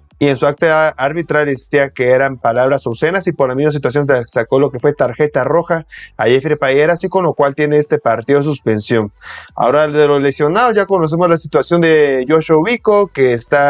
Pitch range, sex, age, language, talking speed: 130-170 Hz, male, 30-49, Spanish, 200 wpm